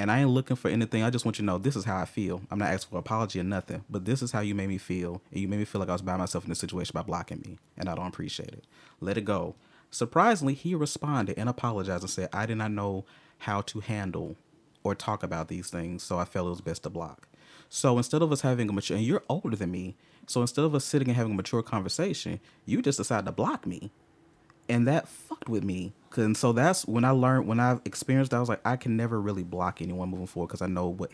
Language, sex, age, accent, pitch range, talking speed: English, male, 30-49, American, 100-125 Hz, 270 wpm